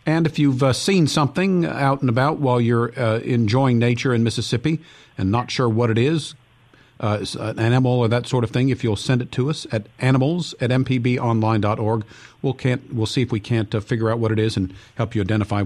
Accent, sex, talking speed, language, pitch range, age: American, male, 225 wpm, English, 115-135 Hz, 50-69